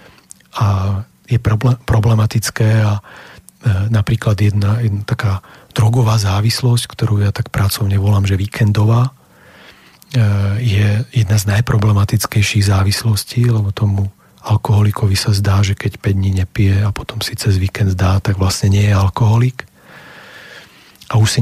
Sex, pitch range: male, 100-115 Hz